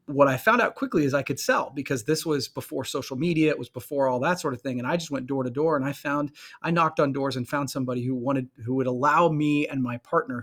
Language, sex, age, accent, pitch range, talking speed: English, male, 30-49, American, 125-150 Hz, 280 wpm